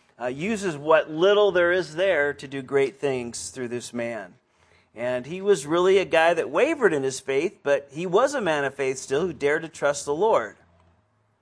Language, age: English, 40-59